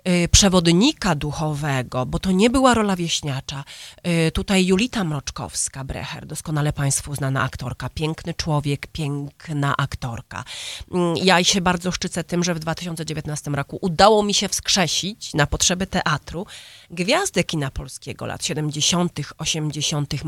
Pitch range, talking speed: 150-195 Hz, 120 wpm